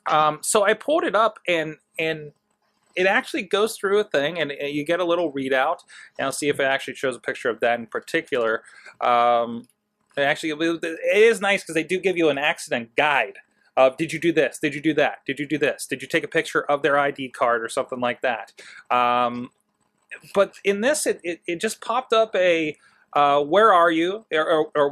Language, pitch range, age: English, 130-170 Hz, 30-49